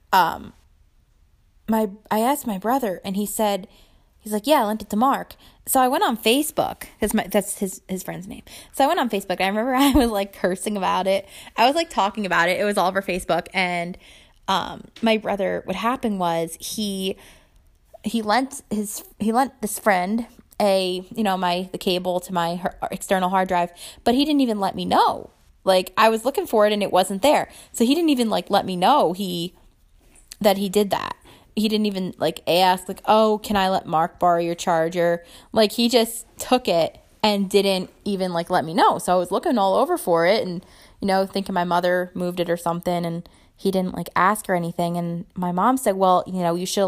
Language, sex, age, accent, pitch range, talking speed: English, female, 20-39, American, 180-220 Hz, 220 wpm